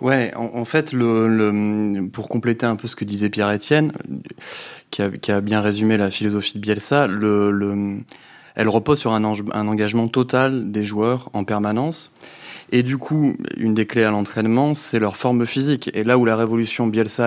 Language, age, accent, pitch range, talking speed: French, 20-39, French, 105-120 Hz, 190 wpm